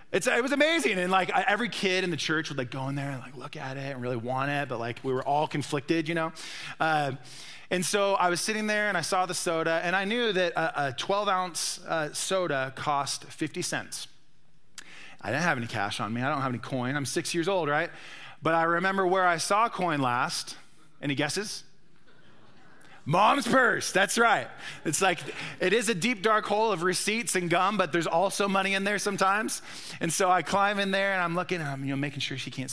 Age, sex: 20-39, male